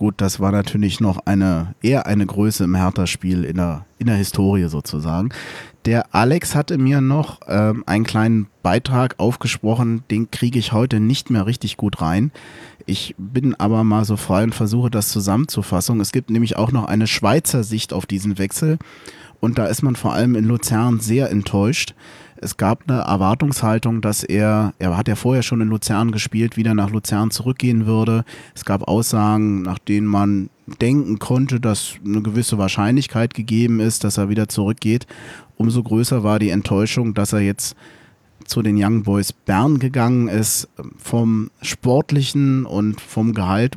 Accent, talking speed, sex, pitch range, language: German, 165 wpm, male, 105-125 Hz, German